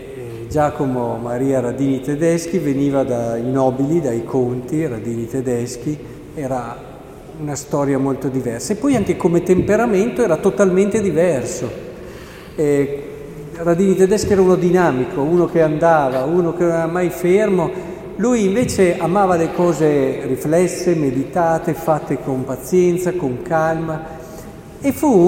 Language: Italian